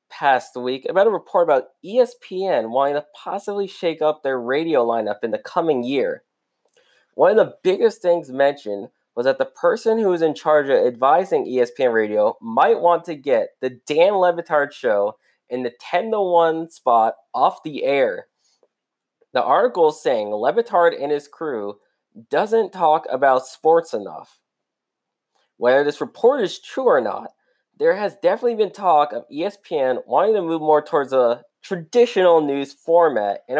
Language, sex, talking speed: English, male, 160 wpm